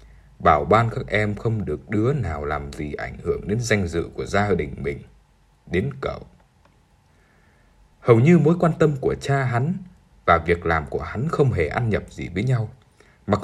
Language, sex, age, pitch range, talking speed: Vietnamese, male, 20-39, 90-130 Hz, 190 wpm